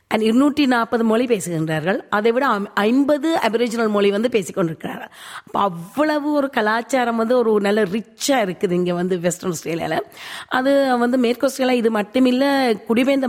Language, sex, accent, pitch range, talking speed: Tamil, female, native, 185-240 Hz, 145 wpm